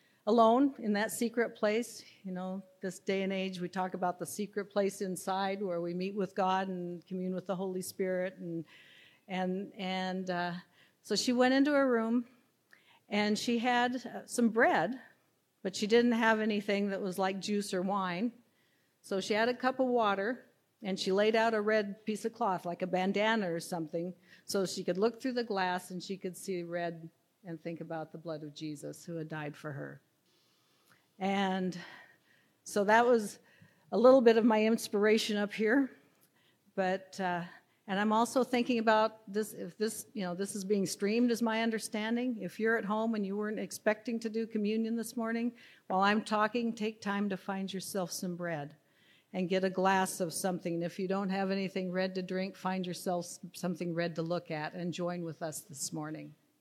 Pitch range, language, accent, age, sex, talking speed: 180-220 Hz, English, American, 50-69, female, 195 wpm